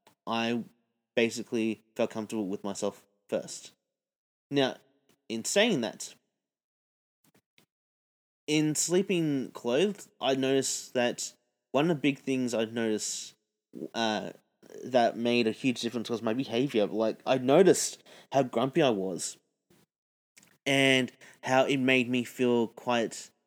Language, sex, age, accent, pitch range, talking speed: English, male, 30-49, Australian, 110-135 Hz, 120 wpm